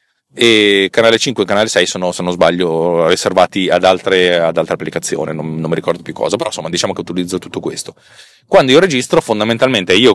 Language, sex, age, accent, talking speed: Italian, male, 30-49, native, 200 wpm